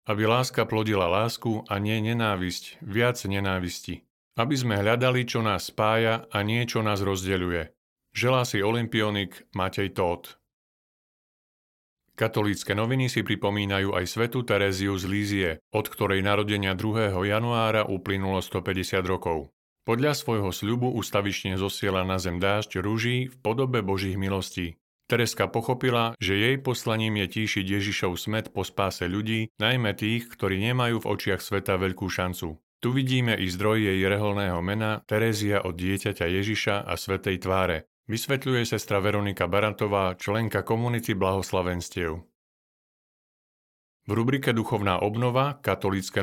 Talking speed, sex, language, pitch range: 130 wpm, male, Slovak, 95-115 Hz